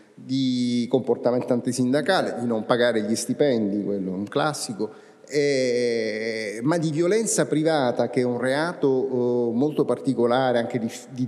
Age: 30-49